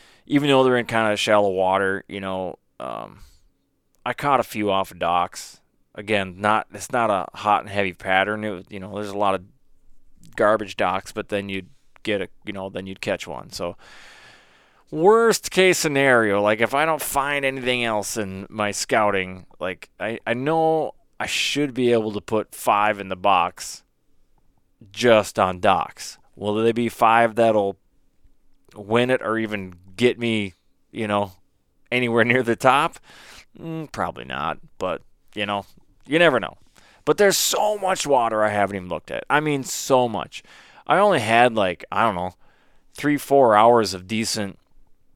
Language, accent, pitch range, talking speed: English, American, 100-125 Hz, 170 wpm